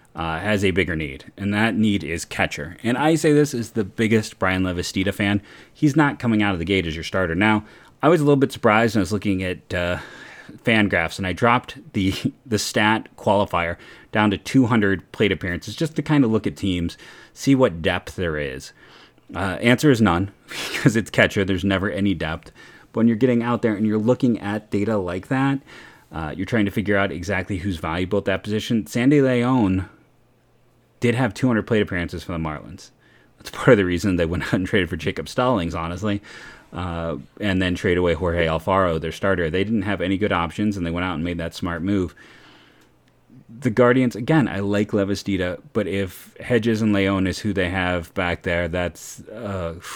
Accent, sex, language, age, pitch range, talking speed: American, male, English, 30-49, 90-115 Hz, 205 wpm